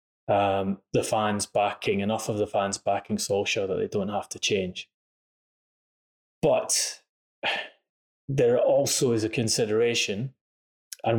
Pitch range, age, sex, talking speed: 100-115 Hz, 20-39, male, 125 wpm